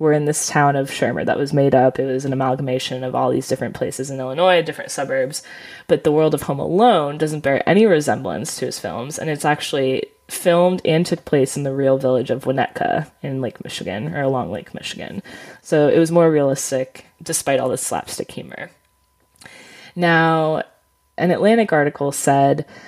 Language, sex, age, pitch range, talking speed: English, female, 20-39, 135-180 Hz, 185 wpm